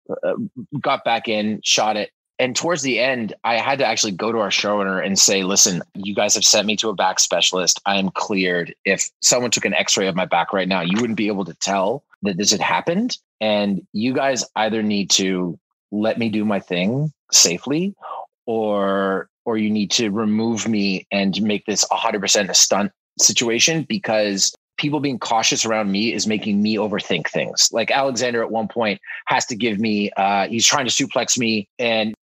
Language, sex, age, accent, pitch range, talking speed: English, male, 30-49, American, 105-140 Hz, 195 wpm